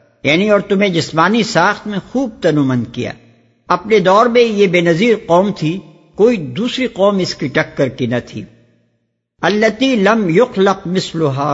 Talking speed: 155 wpm